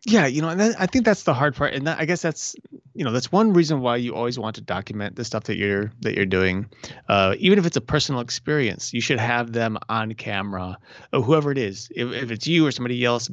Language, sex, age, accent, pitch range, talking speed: English, male, 30-49, American, 105-140 Hz, 255 wpm